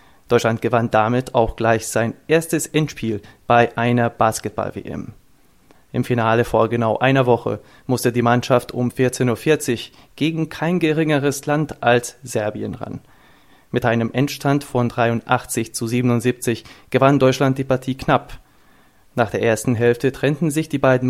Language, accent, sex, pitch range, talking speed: German, German, male, 115-135 Hz, 140 wpm